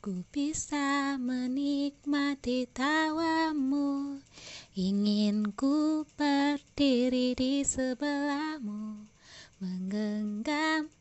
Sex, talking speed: female, 55 wpm